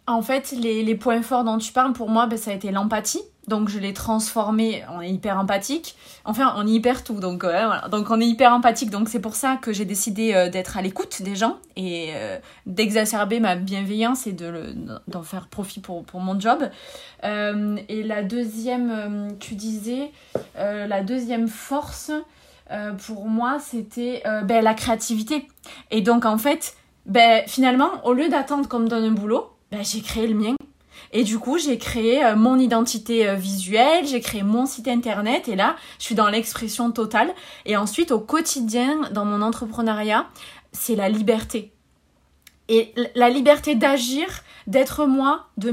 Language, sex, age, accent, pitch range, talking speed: French, female, 20-39, French, 210-255 Hz, 180 wpm